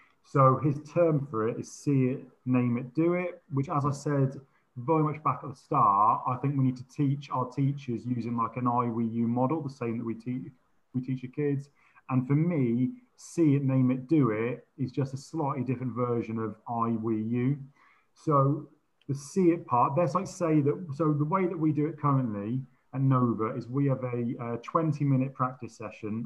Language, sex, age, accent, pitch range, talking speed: English, male, 30-49, British, 125-150 Hz, 200 wpm